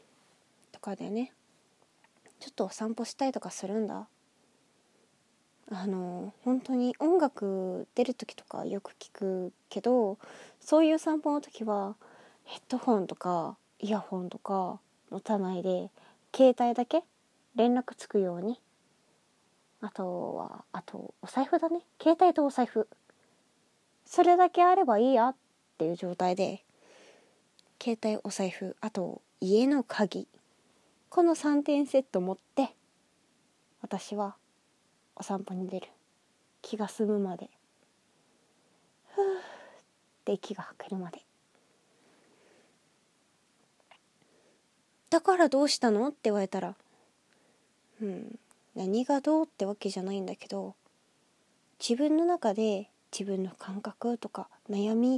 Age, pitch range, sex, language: 20-39, 195-265 Hz, female, Japanese